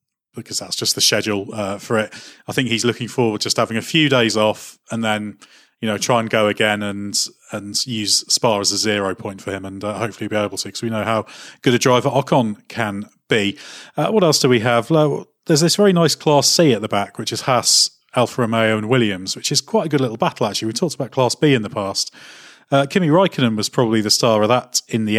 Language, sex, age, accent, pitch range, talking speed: English, male, 30-49, British, 105-125 Hz, 245 wpm